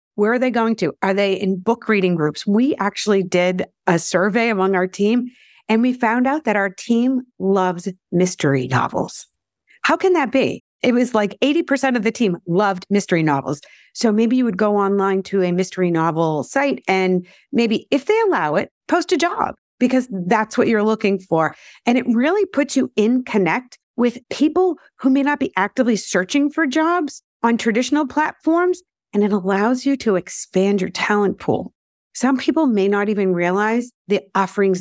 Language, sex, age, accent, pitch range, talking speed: English, female, 50-69, American, 185-250 Hz, 185 wpm